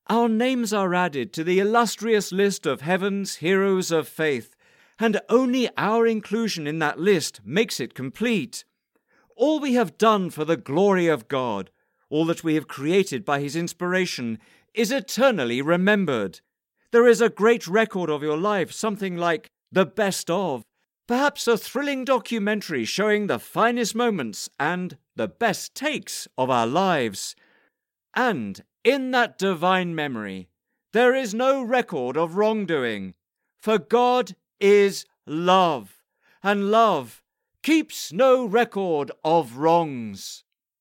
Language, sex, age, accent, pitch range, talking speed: English, male, 50-69, British, 165-235 Hz, 135 wpm